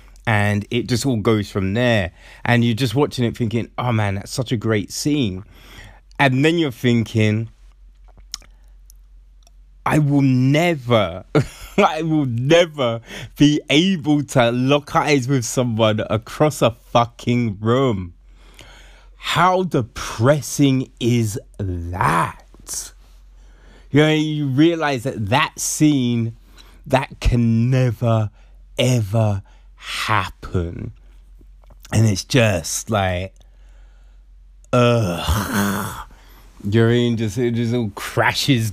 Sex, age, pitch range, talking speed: male, 20-39, 100-135 Hz, 105 wpm